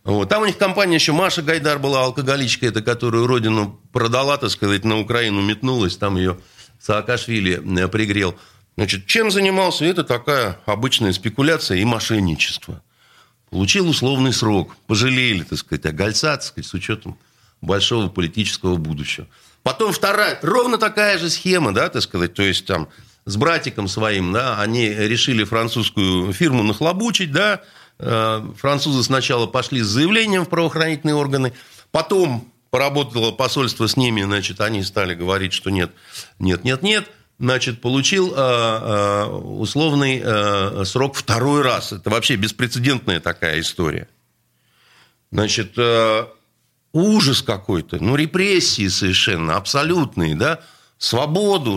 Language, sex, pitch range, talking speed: Russian, male, 105-150 Hz, 125 wpm